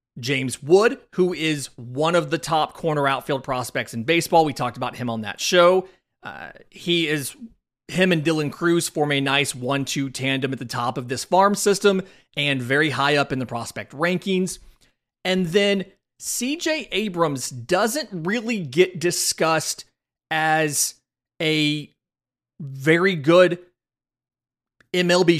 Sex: male